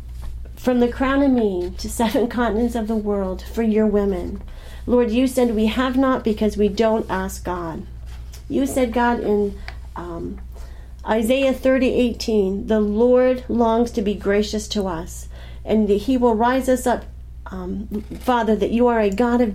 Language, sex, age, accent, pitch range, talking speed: English, female, 40-59, American, 200-245 Hz, 170 wpm